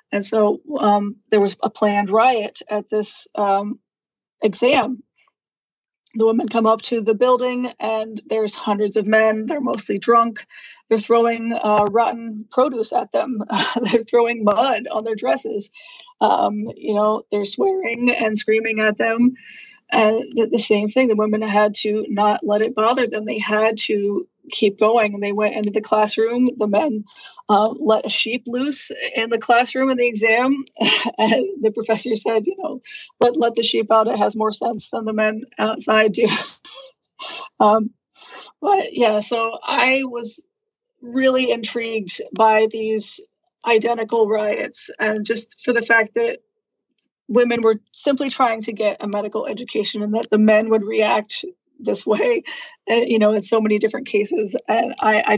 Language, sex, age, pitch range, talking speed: English, female, 30-49, 215-245 Hz, 165 wpm